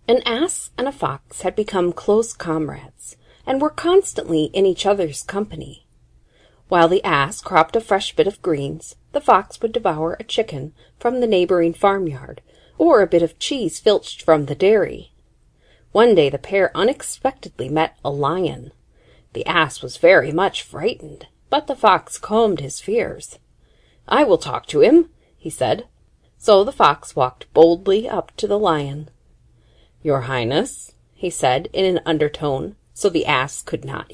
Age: 40-59